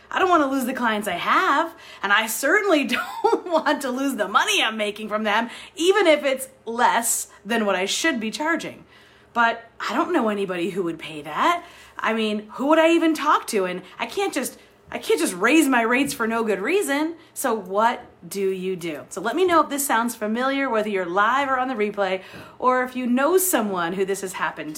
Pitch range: 200-290 Hz